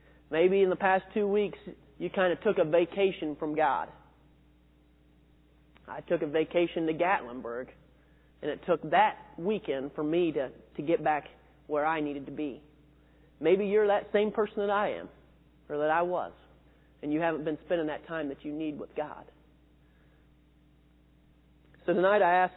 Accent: American